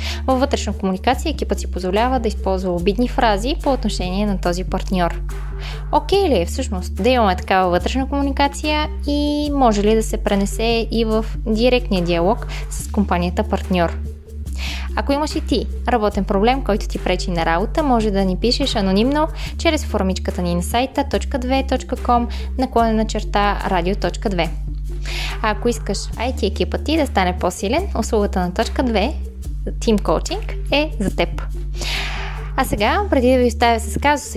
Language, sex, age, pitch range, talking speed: Bulgarian, female, 20-39, 180-245 Hz, 155 wpm